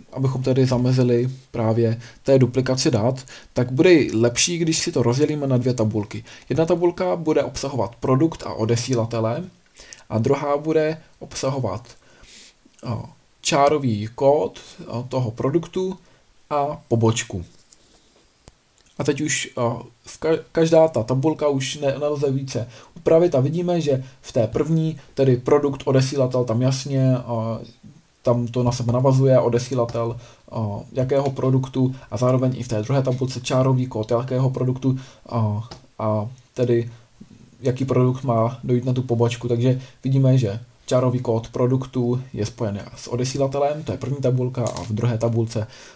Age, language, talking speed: 20-39, Czech, 140 wpm